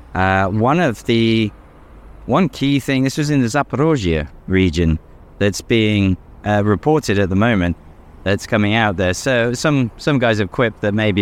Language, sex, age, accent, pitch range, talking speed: English, male, 20-39, British, 95-125 Hz, 170 wpm